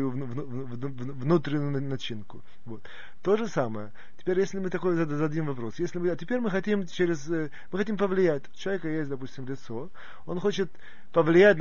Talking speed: 155 wpm